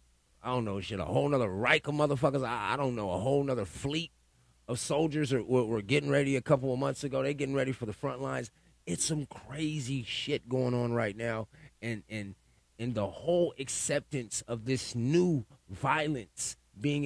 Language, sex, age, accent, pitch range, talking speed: English, male, 30-49, American, 95-145 Hz, 195 wpm